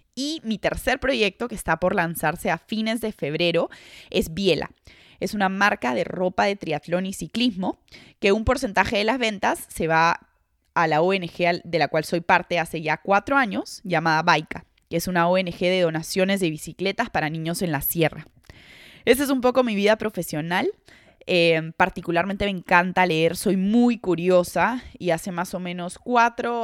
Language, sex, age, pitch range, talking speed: Spanish, female, 20-39, 170-205 Hz, 180 wpm